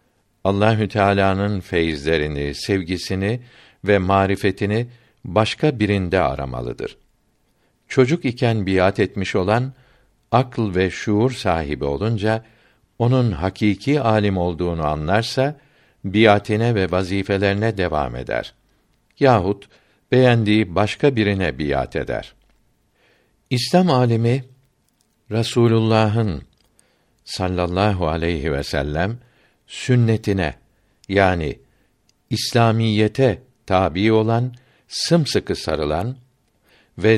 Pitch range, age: 95-120 Hz, 60-79